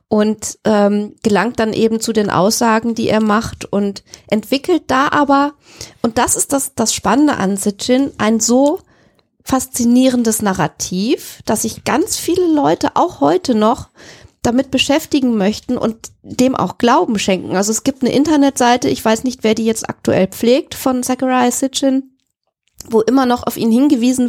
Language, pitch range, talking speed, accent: German, 215-255 Hz, 160 wpm, German